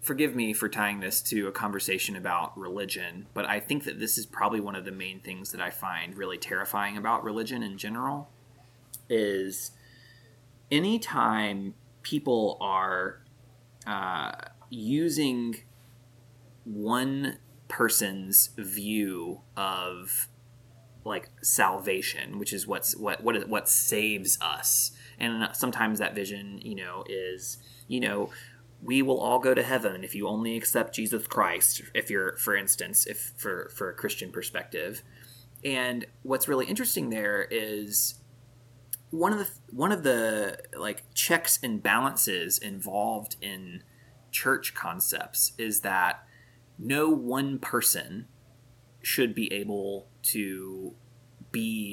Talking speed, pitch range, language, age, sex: 130 wpm, 105-125 Hz, English, 20-39, male